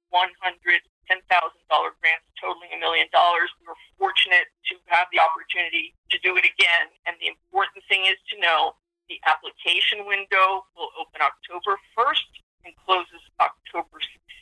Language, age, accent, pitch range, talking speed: English, 50-69, American, 180-255 Hz, 135 wpm